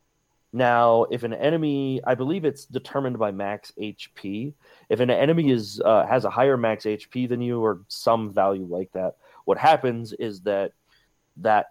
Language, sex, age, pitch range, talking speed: English, male, 30-49, 100-125 Hz, 170 wpm